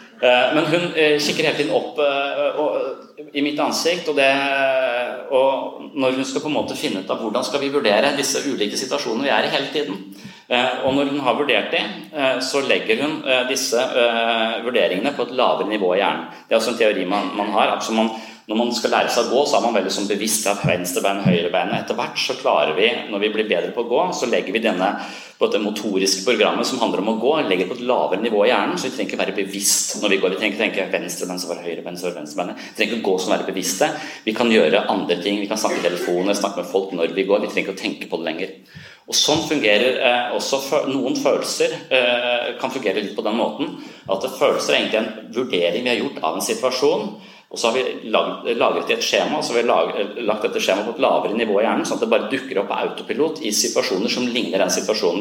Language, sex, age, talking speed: Danish, male, 30-49, 235 wpm